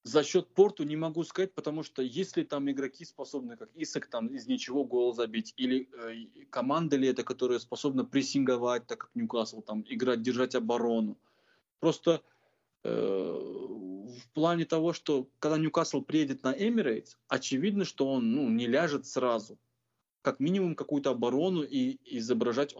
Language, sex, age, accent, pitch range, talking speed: Russian, male, 20-39, native, 125-170 Hz, 155 wpm